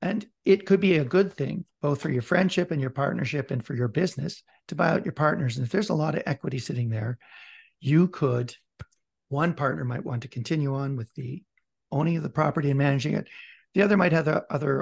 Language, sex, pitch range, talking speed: English, male, 130-175 Hz, 225 wpm